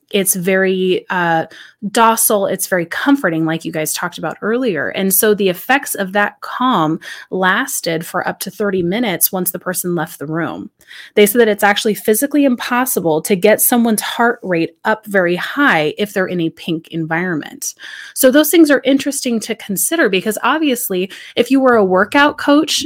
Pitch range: 175-240 Hz